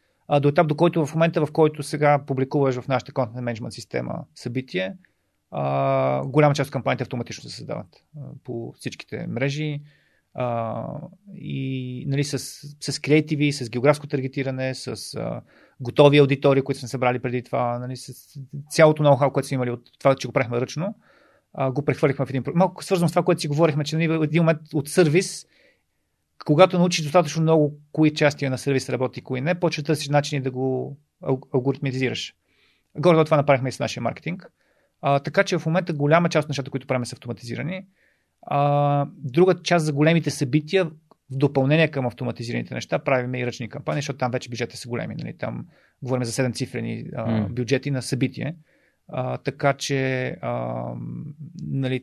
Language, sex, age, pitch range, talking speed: Bulgarian, male, 30-49, 125-155 Hz, 175 wpm